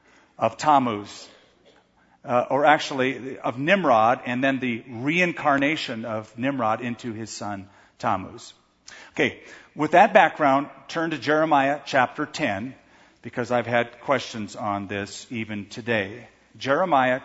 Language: English